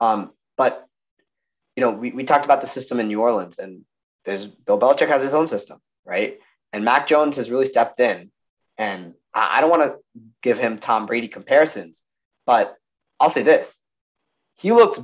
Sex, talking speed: male, 185 wpm